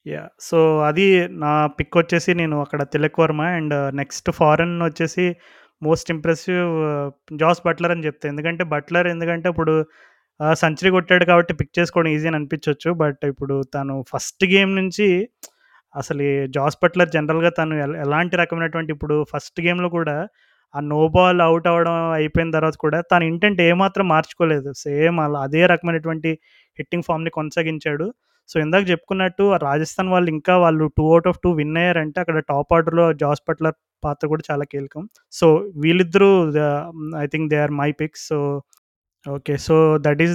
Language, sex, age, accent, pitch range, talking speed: Telugu, male, 20-39, native, 150-170 Hz, 150 wpm